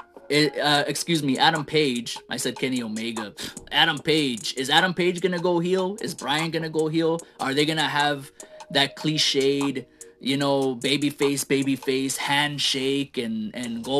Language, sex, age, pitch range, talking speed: English, male, 20-39, 125-170 Hz, 175 wpm